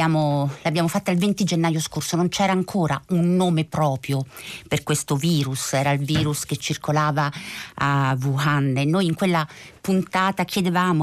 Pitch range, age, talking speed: 150-185 Hz, 50-69, 150 wpm